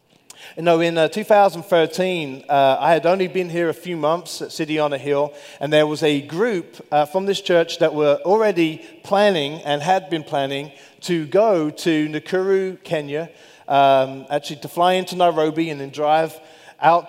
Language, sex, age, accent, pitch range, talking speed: English, male, 40-59, British, 155-195 Hz, 180 wpm